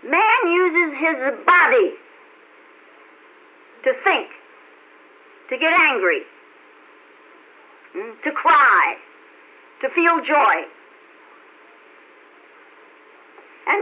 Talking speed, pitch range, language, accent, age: 65 wpm, 300-450 Hz, English, American, 60-79